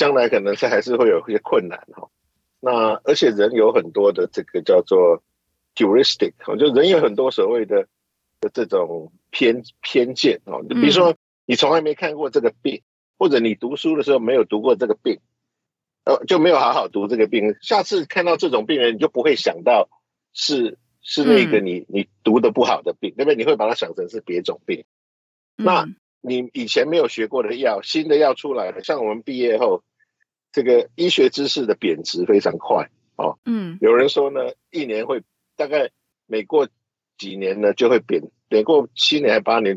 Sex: male